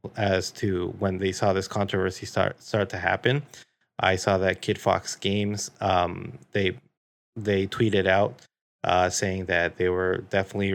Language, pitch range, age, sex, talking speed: English, 95-105 Hz, 30-49, male, 155 wpm